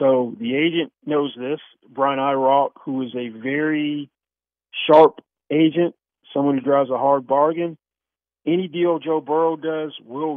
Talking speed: 145 wpm